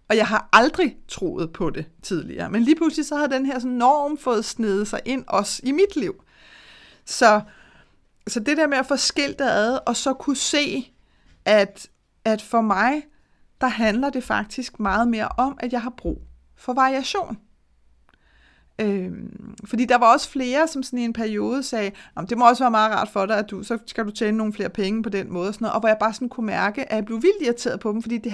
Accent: native